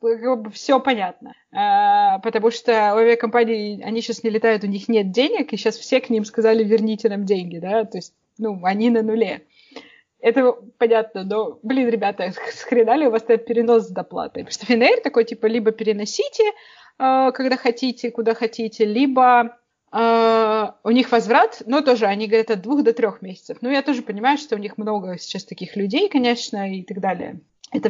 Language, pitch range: Russian, 210-245 Hz